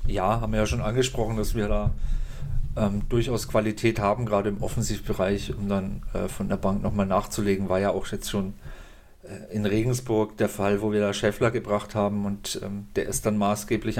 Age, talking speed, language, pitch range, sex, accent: 40-59, 195 wpm, German, 100-120 Hz, male, German